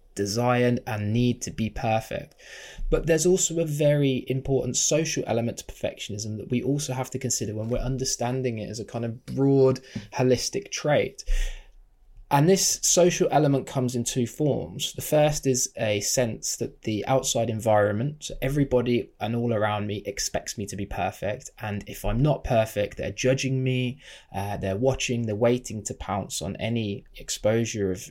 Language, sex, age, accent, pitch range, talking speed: English, male, 20-39, British, 105-130 Hz, 170 wpm